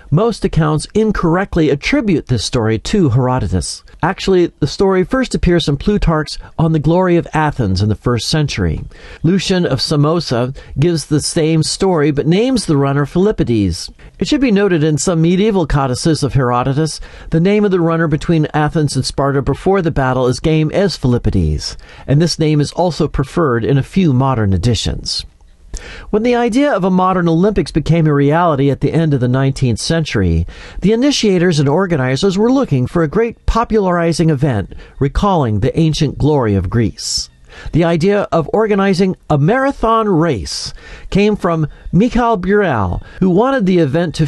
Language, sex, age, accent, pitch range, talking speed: English, male, 40-59, American, 130-185 Hz, 165 wpm